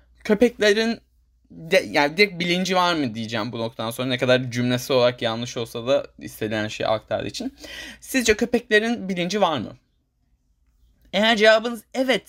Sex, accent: male, native